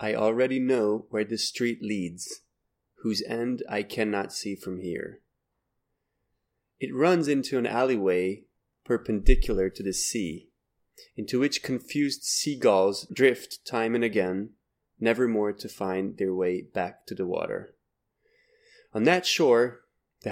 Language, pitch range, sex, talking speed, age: Dutch, 100-125 Hz, male, 135 wpm, 30-49